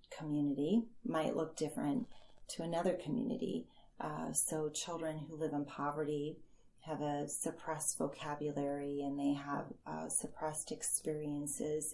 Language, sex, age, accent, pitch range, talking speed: English, female, 30-49, American, 150-175 Hz, 120 wpm